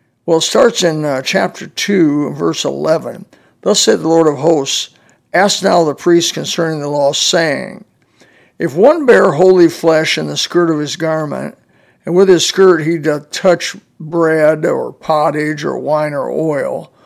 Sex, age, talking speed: male, 60-79, 170 wpm